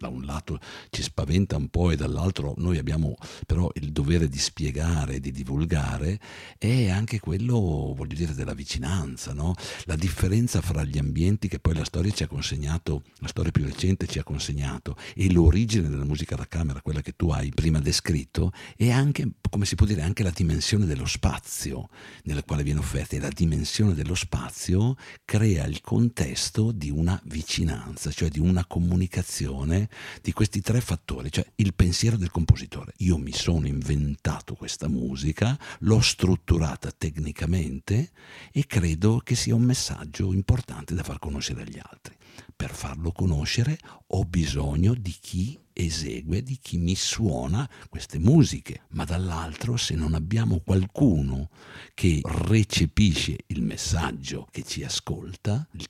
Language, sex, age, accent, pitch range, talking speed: Italian, male, 60-79, native, 75-100 Hz, 155 wpm